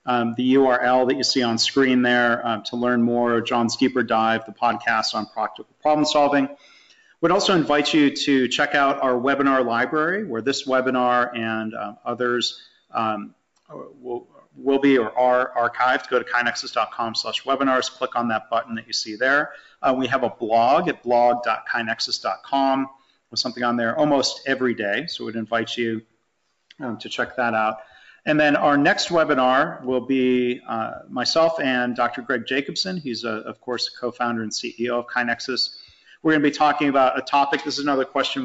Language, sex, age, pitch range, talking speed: English, male, 40-59, 115-135 Hz, 180 wpm